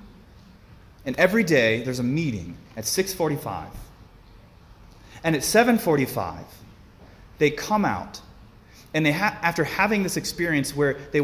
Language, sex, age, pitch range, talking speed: English, male, 30-49, 105-160 Hz, 125 wpm